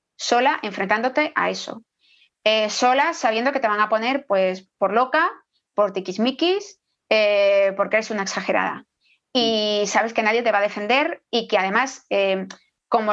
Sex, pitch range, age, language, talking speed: female, 205-255 Hz, 30-49, Spanish, 155 wpm